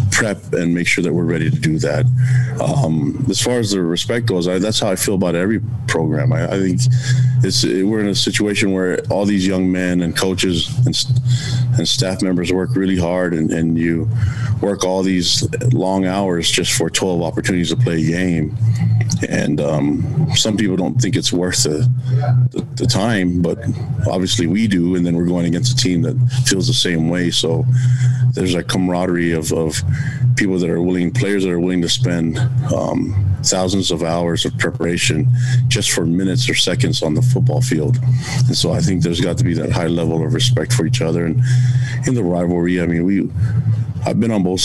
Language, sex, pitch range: English, male, 90-125 Hz